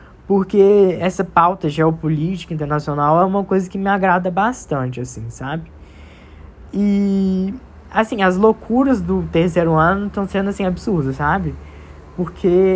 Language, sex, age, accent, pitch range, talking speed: Portuguese, female, 10-29, Brazilian, 165-215 Hz, 125 wpm